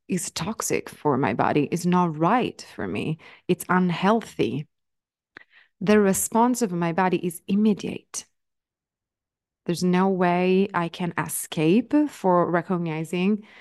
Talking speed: 120 wpm